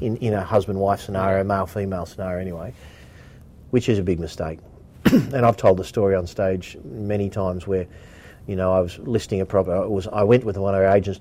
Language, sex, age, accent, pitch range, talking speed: English, male, 40-59, Australian, 100-120 Hz, 205 wpm